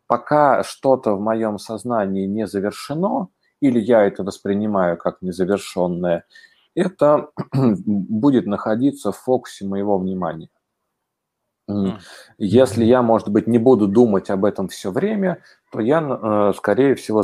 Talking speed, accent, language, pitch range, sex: 120 wpm, native, Russian, 95-120 Hz, male